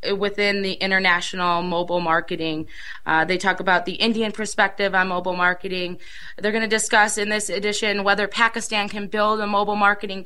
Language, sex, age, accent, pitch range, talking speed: English, female, 20-39, American, 185-215 Hz, 170 wpm